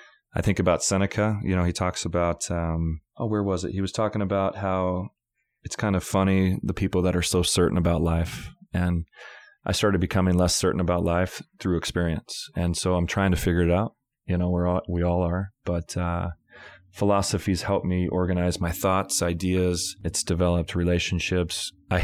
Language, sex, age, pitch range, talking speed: English, male, 30-49, 85-95 Hz, 190 wpm